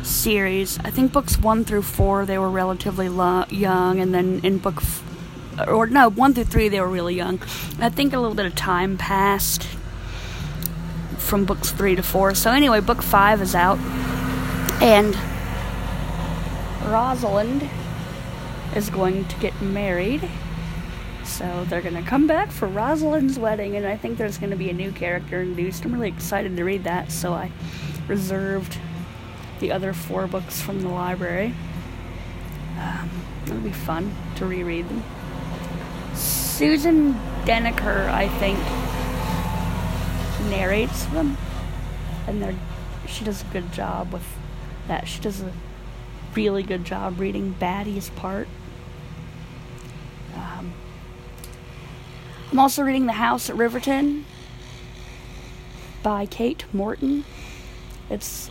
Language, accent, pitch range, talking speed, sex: English, American, 160-210 Hz, 130 wpm, female